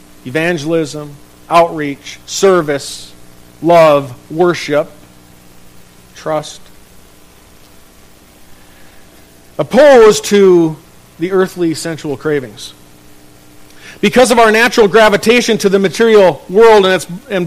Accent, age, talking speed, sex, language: American, 50-69, 80 wpm, male, English